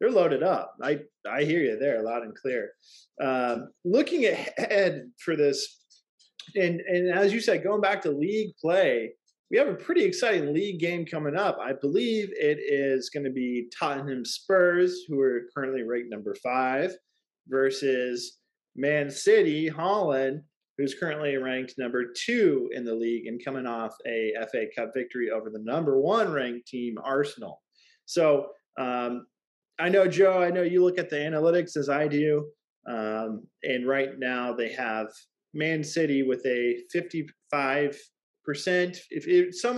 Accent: American